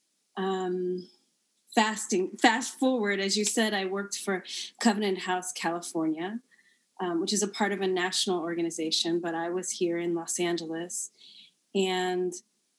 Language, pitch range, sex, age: English, 180-220 Hz, female, 30-49